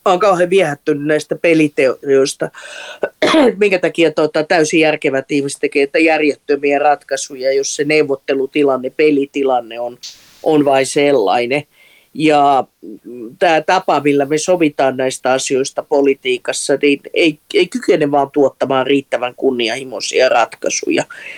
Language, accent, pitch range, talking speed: Finnish, native, 135-155 Hz, 110 wpm